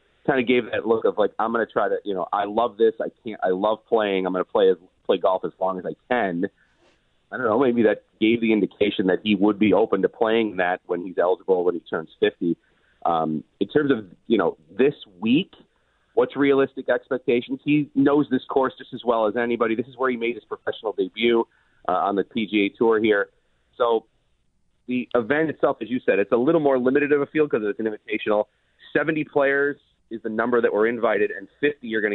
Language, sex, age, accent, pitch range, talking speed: English, male, 30-49, American, 105-140 Hz, 225 wpm